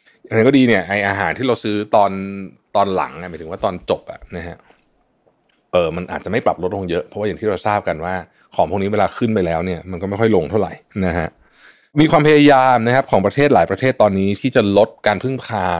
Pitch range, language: 85-110 Hz, Thai